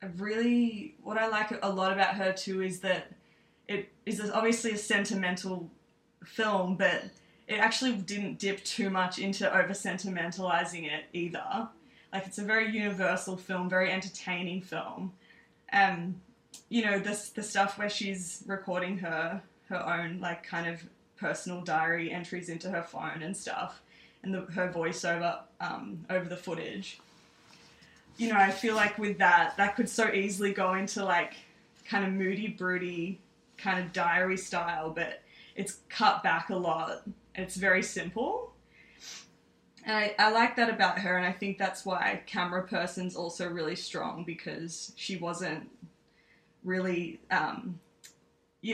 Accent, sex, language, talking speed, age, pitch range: Australian, female, English, 150 wpm, 20-39, 175-205 Hz